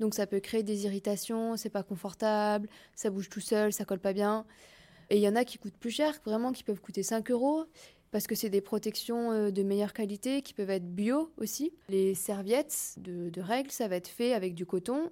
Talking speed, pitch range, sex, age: 225 wpm, 195-230 Hz, female, 20-39